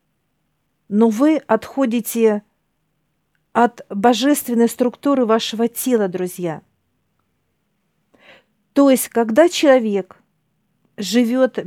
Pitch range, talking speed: 210-255 Hz, 70 wpm